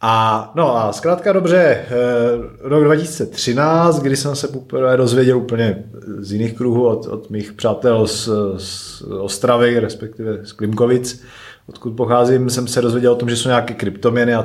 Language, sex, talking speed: Slovak, male, 160 wpm